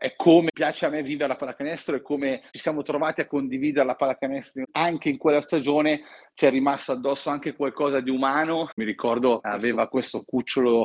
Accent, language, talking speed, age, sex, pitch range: native, Italian, 185 wpm, 40-59, male, 125-145 Hz